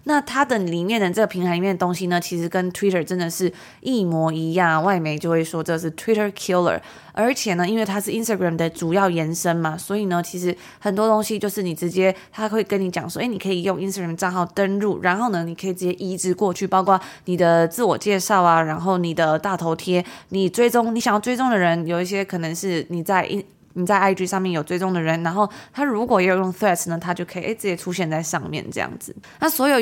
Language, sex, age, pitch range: Chinese, female, 20-39, 175-210 Hz